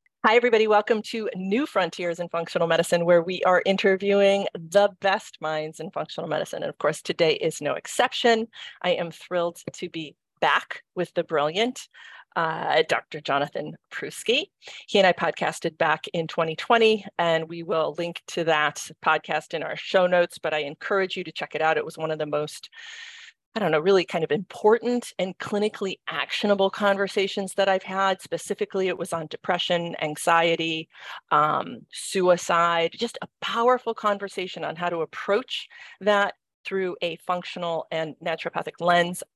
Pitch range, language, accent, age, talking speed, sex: 165-210 Hz, English, American, 40-59, 165 wpm, female